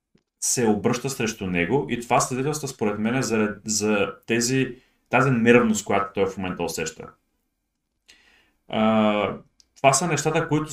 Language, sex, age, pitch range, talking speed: Bulgarian, male, 30-49, 100-130 Hz, 140 wpm